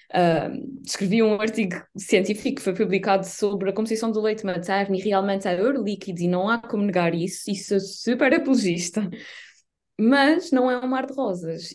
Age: 20-39